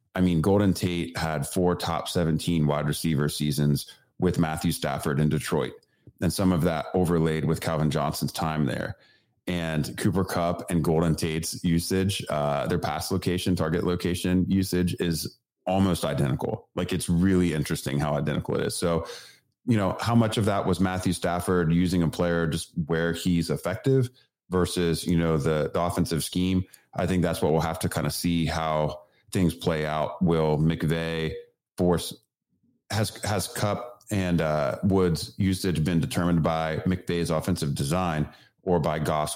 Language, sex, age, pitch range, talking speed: English, male, 30-49, 80-90 Hz, 165 wpm